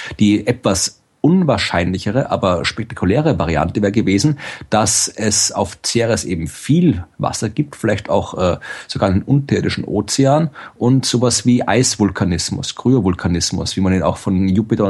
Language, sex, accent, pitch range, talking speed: German, male, German, 90-115 Hz, 135 wpm